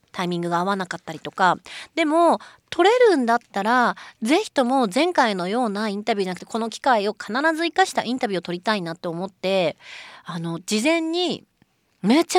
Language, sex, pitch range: Japanese, female, 200-280 Hz